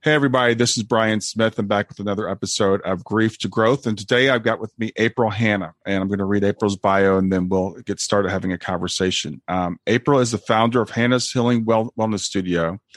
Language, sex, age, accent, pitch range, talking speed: English, male, 40-59, American, 100-120 Hz, 220 wpm